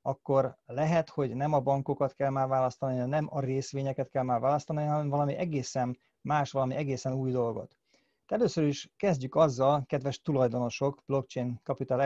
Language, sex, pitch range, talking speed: Hungarian, male, 130-150 Hz, 155 wpm